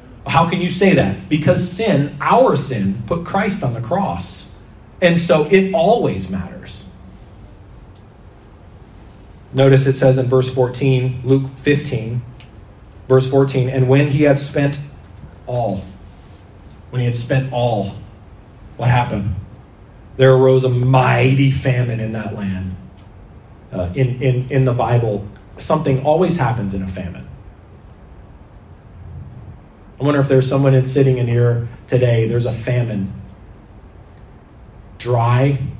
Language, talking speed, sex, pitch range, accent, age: English, 125 wpm, male, 100-135 Hz, American, 30-49